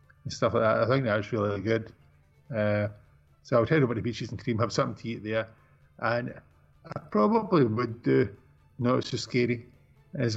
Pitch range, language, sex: 105-120 Hz, English, male